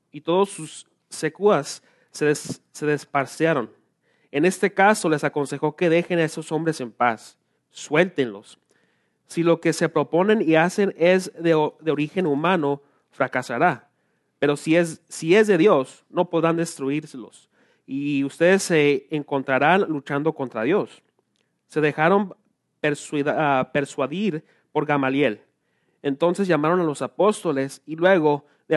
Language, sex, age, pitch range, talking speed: English, male, 30-49, 140-170 Hz, 135 wpm